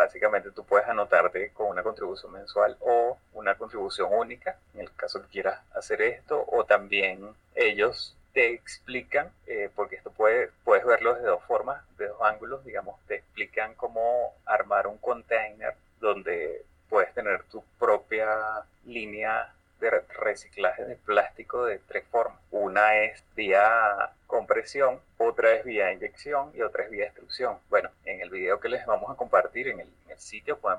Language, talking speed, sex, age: Spanish, 165 wpm, male, 30-49